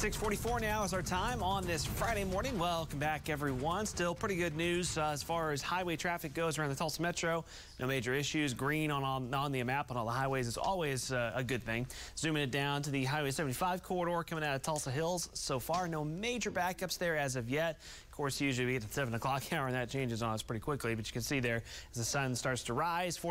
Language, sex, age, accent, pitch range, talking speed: English, male, 30-49, American, 120-160 Hz, 245 wpm